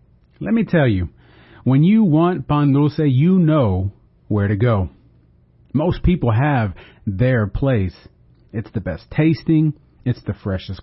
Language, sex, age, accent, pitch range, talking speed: English, male, 40-59, American, 95-145 Hz, 145 wpm